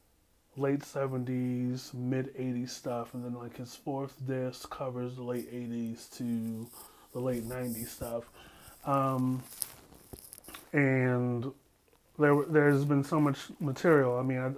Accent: American